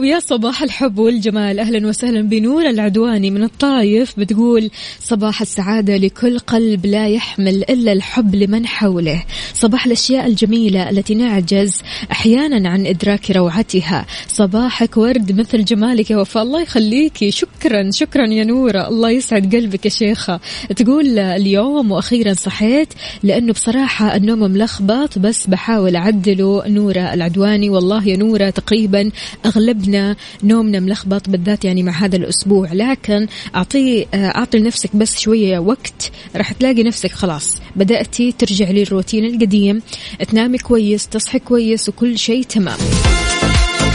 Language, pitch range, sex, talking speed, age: Arabic, 195-230 Hz, female, 125 wpm, 20-39